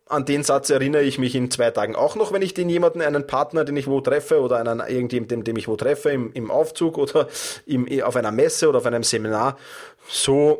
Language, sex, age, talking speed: German, male, 30-49, 220 wpm